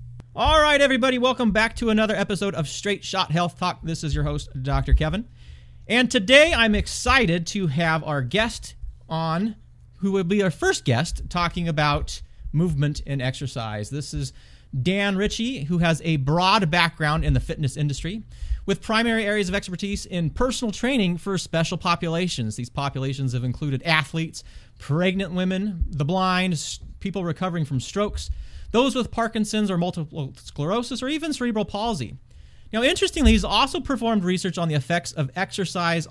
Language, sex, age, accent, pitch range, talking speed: English, male, 30-49, American, 135-200 Hz, 160 wpm